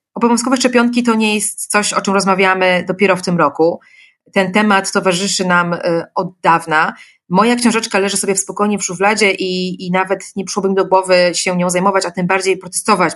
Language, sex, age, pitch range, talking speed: Polish, female, 30-49, 180-215 Hz, 185 wpm